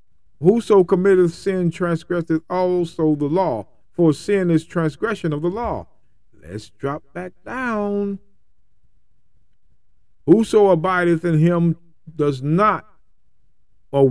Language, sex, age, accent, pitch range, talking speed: English, male, 40-59, American, 135-185 Hz, 105 wpm